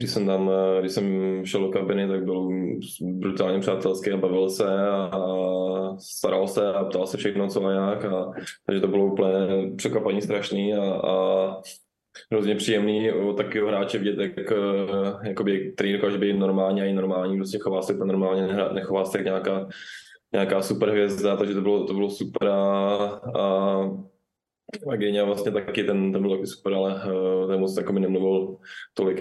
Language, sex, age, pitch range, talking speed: Czech, male, 20-39, 95-100 Hz, 165 wpm